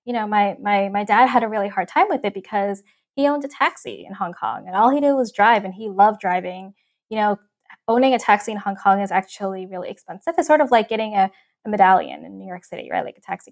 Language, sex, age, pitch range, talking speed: English, female, 10-29, 200-250 Hz, 260 wpm